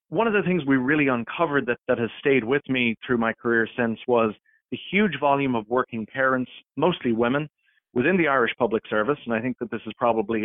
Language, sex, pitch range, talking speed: English, male, 115-140 Hz, 220 wpm